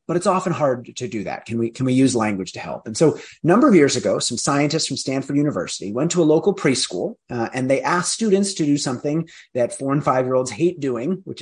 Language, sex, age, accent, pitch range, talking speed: English, male, 30-49, American, 120-170 Hz, 255 wpm